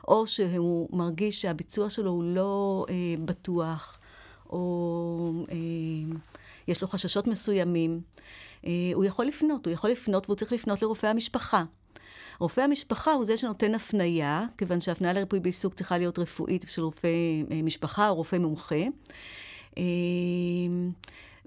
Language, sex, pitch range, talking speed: Hebrew, female, 175-225 Hz, 135 wpm